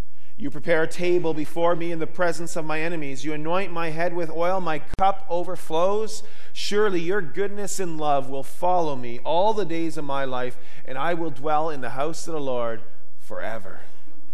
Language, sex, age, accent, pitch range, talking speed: English, male, 40-59, American, 130-175 Hz, 195 wpm